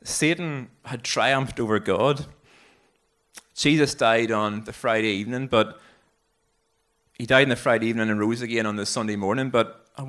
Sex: male